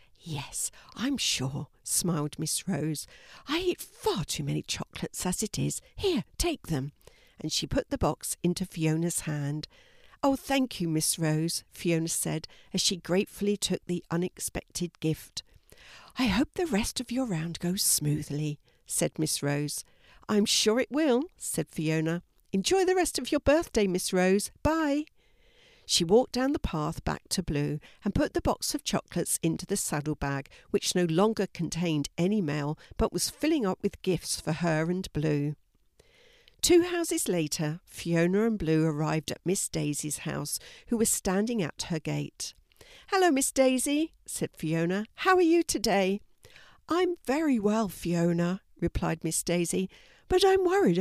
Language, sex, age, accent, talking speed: English, female, 60-79, British, 160 wpm